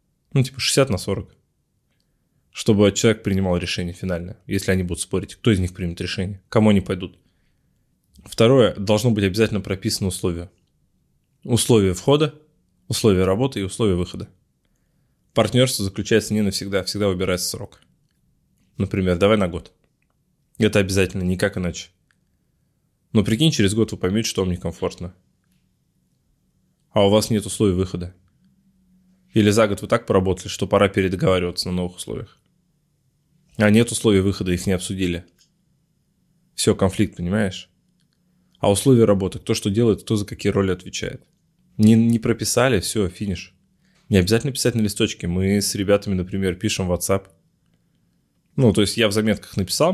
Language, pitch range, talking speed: Russian, 95-115 Hz, 145 wpm